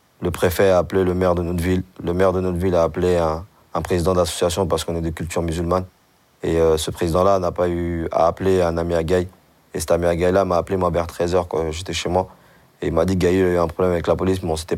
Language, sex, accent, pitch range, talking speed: French, male, French, 85-95 Hz, 285 wpm